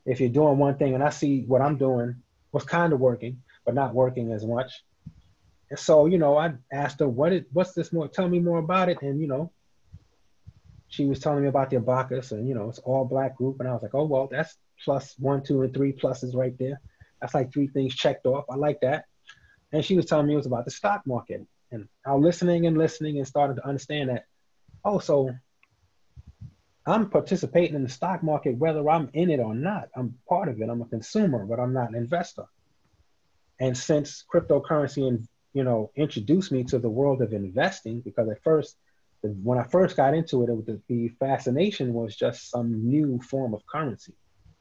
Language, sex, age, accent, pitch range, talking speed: English, male, 30-49, American, 120-150 Hz, 215 wpm